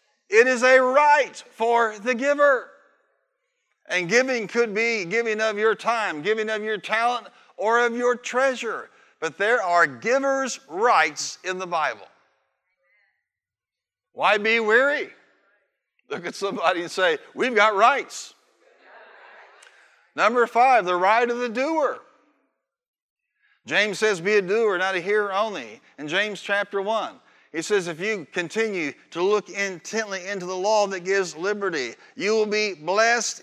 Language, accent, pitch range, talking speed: English, American, 175-235 Hz, 145 wpm